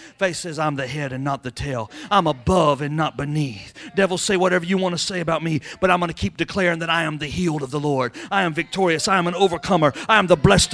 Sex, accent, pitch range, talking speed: male, American, 180-295 Hz, 270 wpm